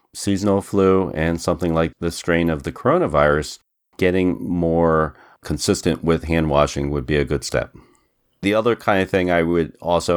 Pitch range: 75-90 Hz